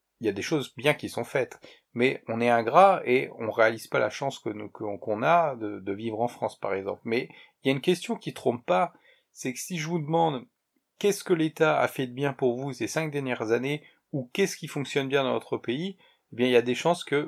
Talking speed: 260 wpm